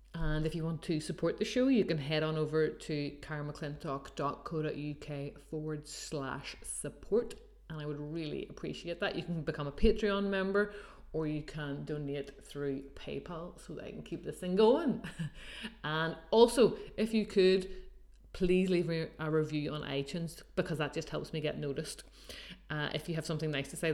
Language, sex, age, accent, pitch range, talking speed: English, female, 30-49, Irish, 150-205 Hz, 180 wpm